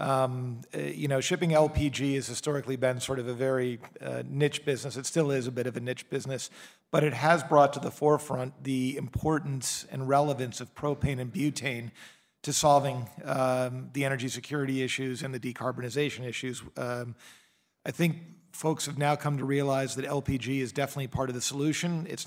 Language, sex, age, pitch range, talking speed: English, male, 50-69, 130-150 Hz, 185 wpm